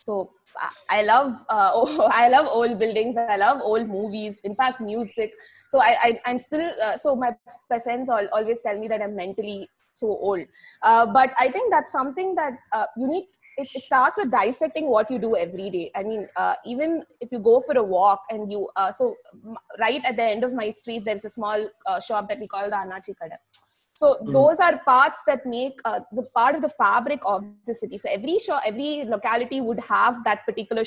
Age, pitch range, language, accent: 20-39, 210-270 Hz, Tamil, native